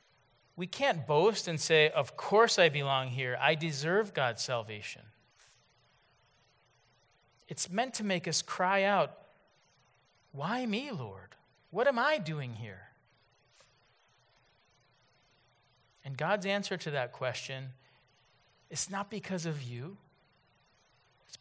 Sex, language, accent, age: male, English, American, 40-59